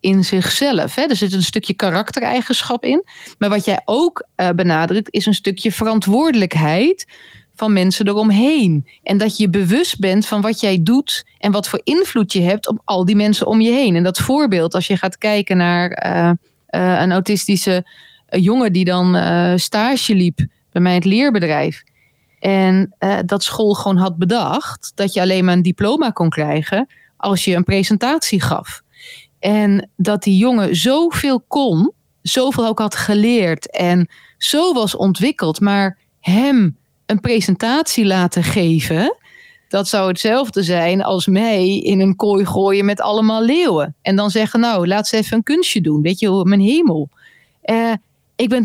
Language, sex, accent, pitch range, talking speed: Dutch, female, Dutch, 185-245 Hz, 170 wpm